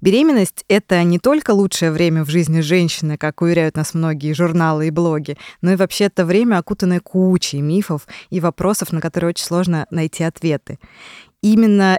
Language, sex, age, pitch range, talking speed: Russian, female, 20-39, 155-195 Hz, 160 wpm